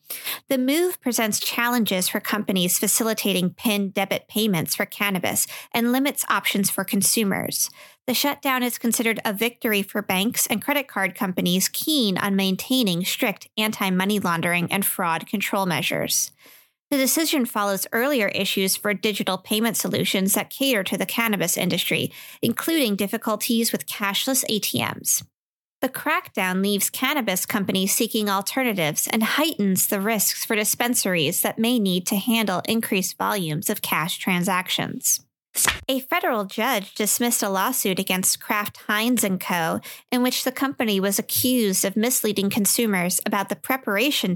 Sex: female